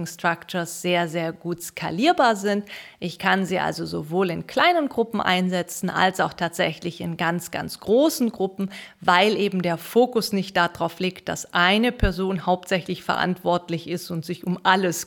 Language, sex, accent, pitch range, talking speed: German, female, German, 175-200 Hz, 160 wpm